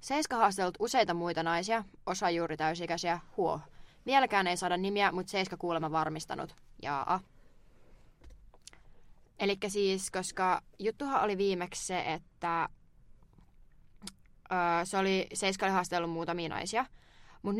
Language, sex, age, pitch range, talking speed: Finnish, female, 20-39, 170-205 Hz, 115 wpm